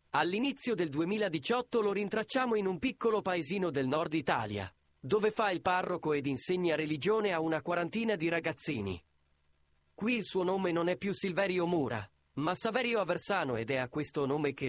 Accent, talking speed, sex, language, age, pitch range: native, 170 wpm, male, Italian, 30-49, 135-195 Hz